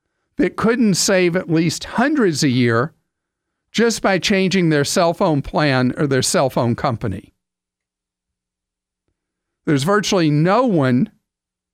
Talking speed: 125 wpm